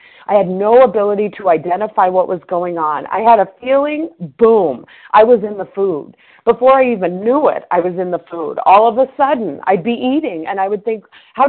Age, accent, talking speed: 40-59, American, 220 wpm